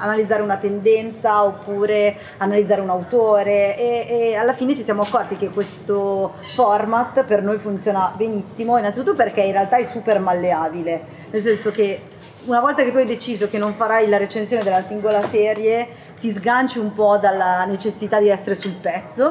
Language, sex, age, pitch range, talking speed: Italian, female, 20-39, 195-225 Hz, 170 wpm